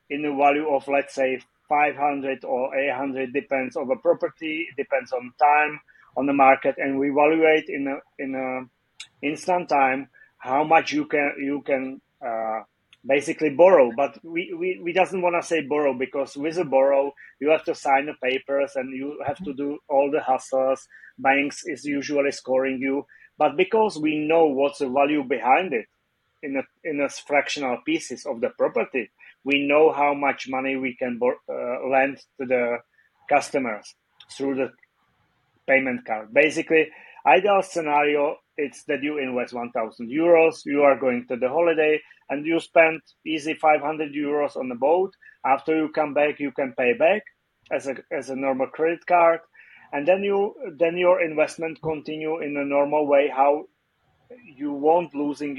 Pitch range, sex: 135-160 Hz, male